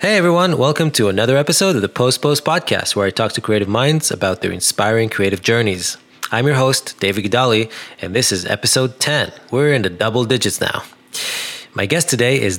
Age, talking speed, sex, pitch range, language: 20-39, 200 wpm, male, 105-130 Hz, English